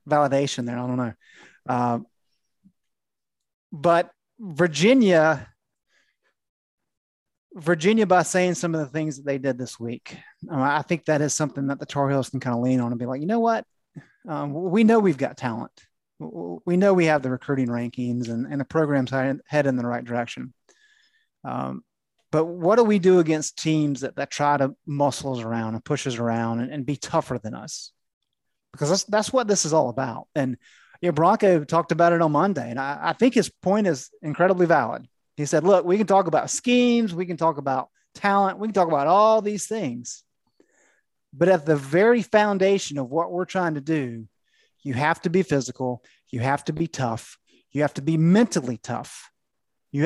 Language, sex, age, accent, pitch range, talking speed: English, male, 30-49, American, 135-190 Hz, 190 wpm